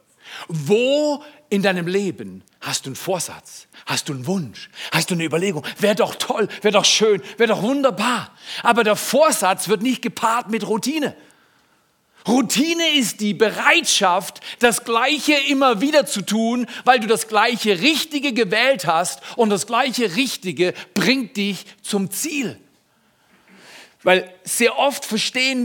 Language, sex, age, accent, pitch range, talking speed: German, male, 40-59, German, 180-250 Hz, 145 wpm